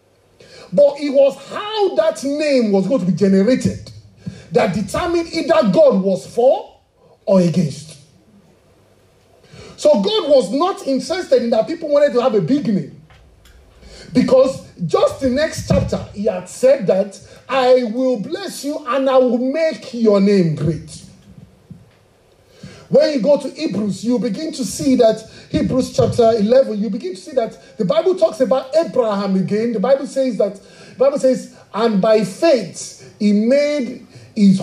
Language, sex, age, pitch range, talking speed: English, male, 40-59, 180-265 Hz, 155 wpm